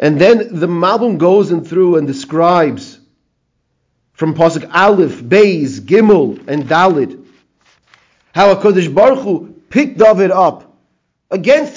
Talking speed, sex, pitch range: 120 wpm, male, 155-205 Hz